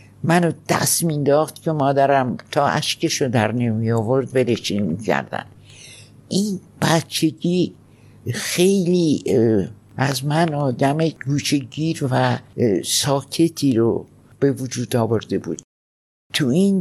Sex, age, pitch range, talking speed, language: male, 60-79, 115-140 Hz, 105 wpm, Persian